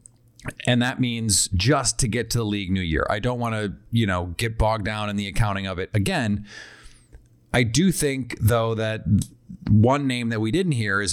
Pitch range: 105-125 Hz